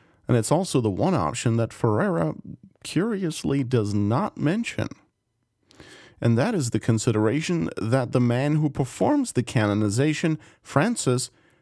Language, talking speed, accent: English, 130 wpm, American